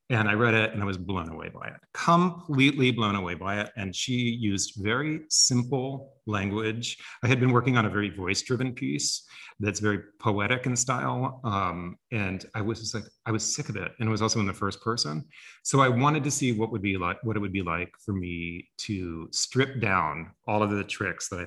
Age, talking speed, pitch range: 30-49, 215 wpm, 95-125 Hz